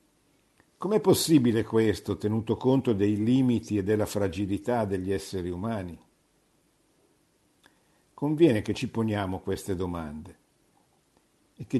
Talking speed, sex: 105 wpm, male